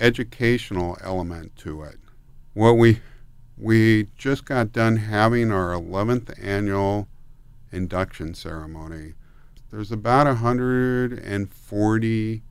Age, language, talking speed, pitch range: 50-69, English, 105 wpm, 95-115 Hz